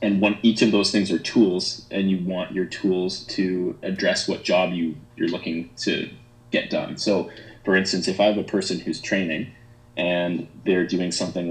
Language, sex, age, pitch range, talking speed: English, male, 30-49, 85-115 Hz, 195 wpm